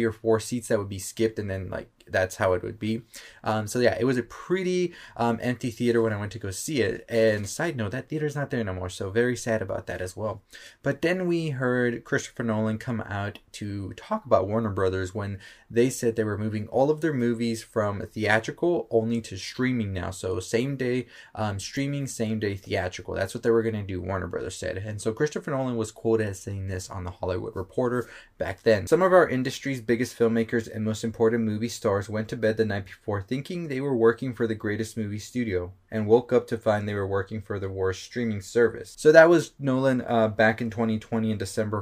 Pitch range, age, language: 100-120 Hz, 20-39, English